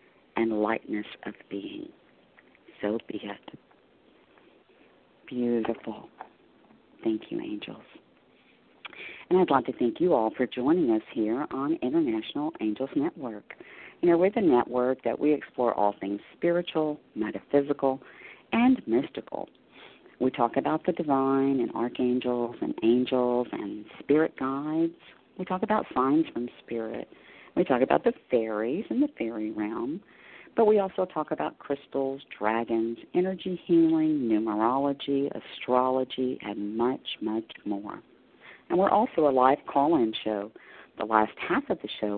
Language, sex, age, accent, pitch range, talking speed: English, female, 50-69, American, 115-185 Hz, 135 wpm